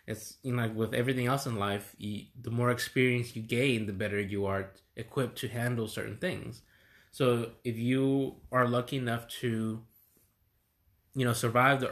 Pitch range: 105-125 Hz